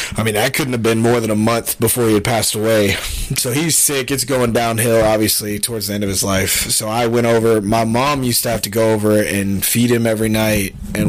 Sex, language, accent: male, English, American